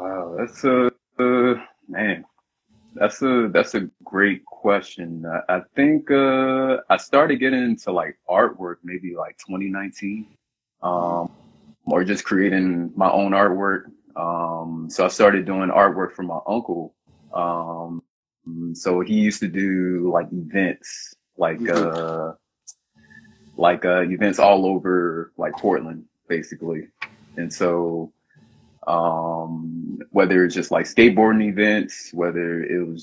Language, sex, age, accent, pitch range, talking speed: English, male, 30-49, American, 85-100 Hz, 125 wpm